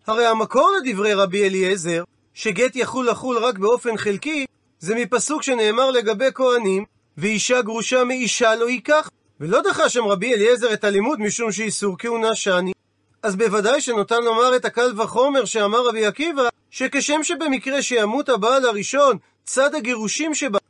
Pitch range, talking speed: 205-260 Hz, 145 wpm